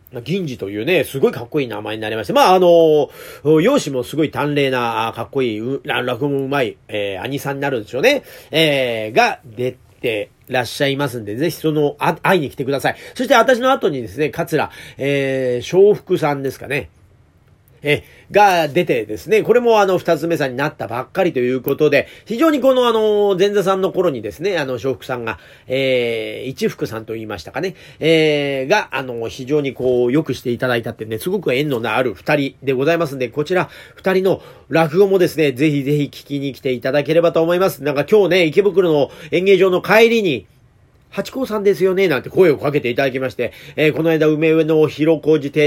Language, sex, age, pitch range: Japanese, male, 40-59, 130-190 Hz